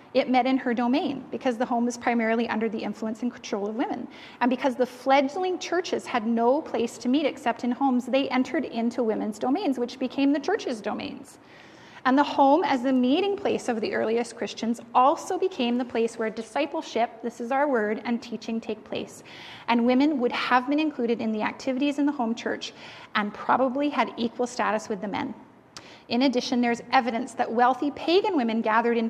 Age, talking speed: 30-49, 200 wpm